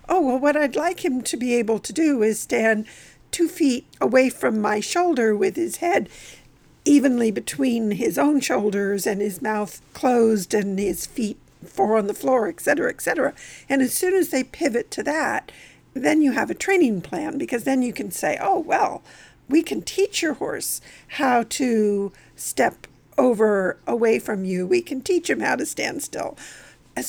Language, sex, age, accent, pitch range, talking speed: English, female, 50-69, American, 215-305 Hz, 185 wpm